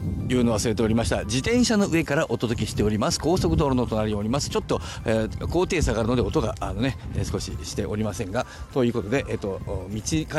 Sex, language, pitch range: male, Japanese, 105-160 Hz